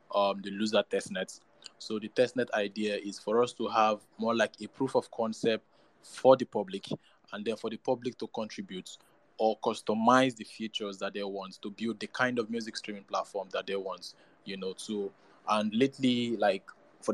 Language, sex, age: English, male, 20-39